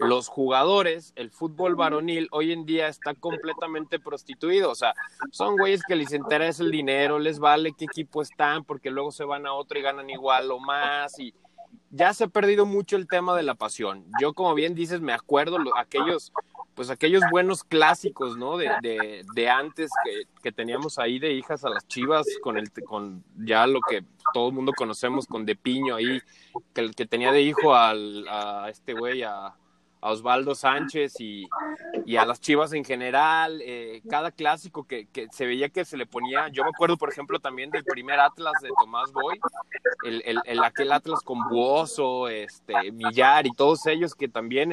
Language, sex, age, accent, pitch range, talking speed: Spanish, male, 20-39, Mexican, 130-170 Hz, 190 wpm